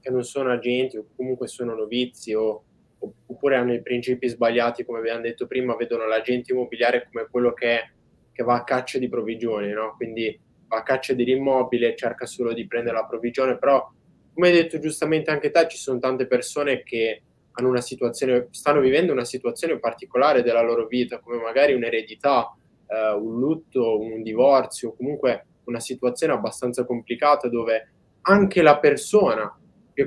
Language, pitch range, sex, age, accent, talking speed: Italian, 120-145 Hz, male, 20-39, native, 165 wpm